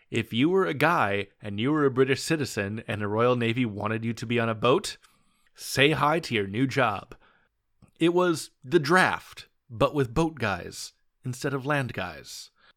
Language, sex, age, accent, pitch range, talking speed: English, male, 30-49, American, 105-135 Hz, 190 wpm